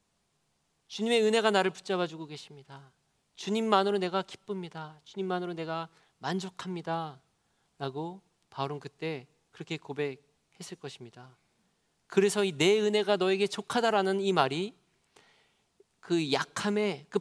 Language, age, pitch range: Korean, 40-59, 155-205 Hz